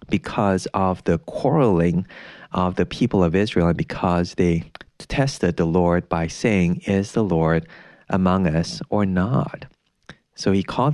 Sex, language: male, English